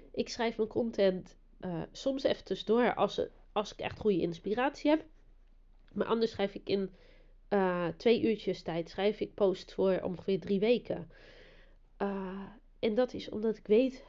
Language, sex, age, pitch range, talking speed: Dutch, female, 30-49, 180-220 Hz, 160 wpm